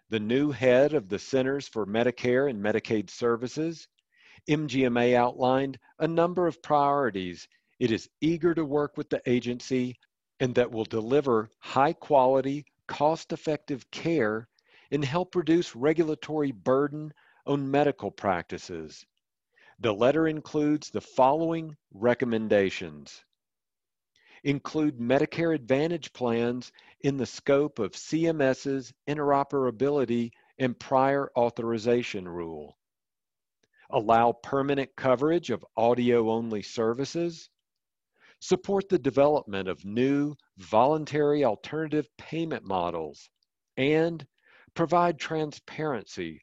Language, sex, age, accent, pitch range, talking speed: English, male, 50-69, American, 120-150 Hz, 100 wpm